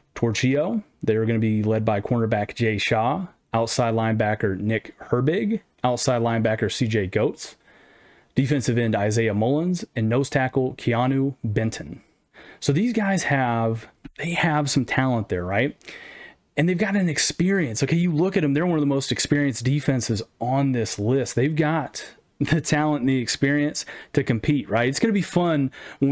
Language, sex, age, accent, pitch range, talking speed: English, male, 30-49, American, 115-145 Hz, 165 wpm